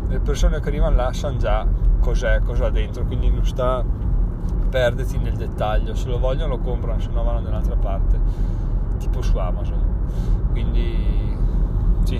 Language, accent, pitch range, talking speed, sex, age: Italian, native, 95-120 Hz, 150 wpm, male, 30-49